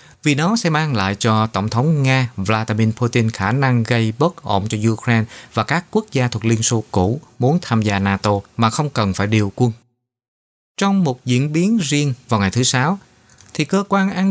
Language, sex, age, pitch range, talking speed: Vietnamese, male, 20-39, 105-140 Hz, 205 wpm